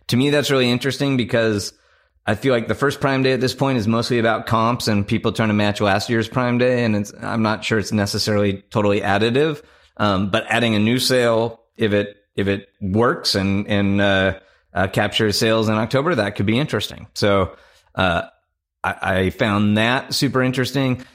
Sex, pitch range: male, 100-115 Hz